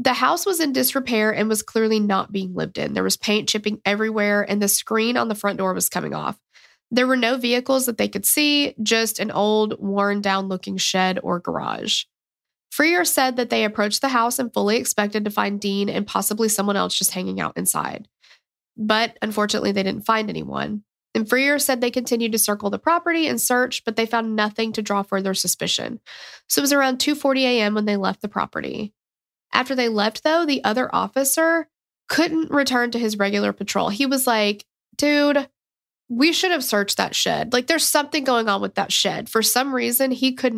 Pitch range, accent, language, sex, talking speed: 205-260 Hz, American, English, female, 200 wpm